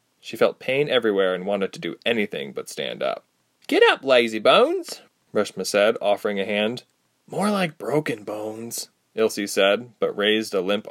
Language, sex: English, male